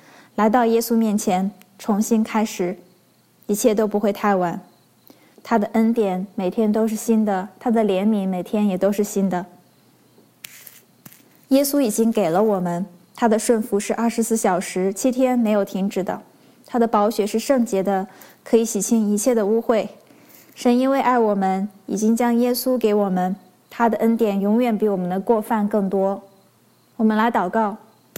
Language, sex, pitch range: English, female, 195-235 Hz